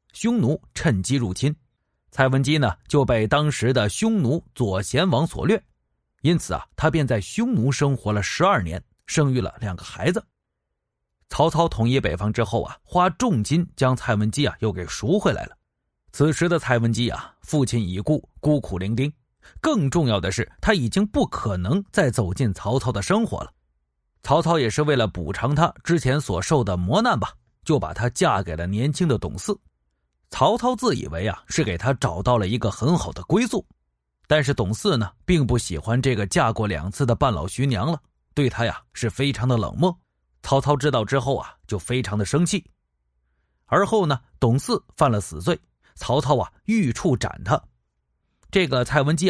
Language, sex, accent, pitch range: Chinese, male, native, 100-150 Hz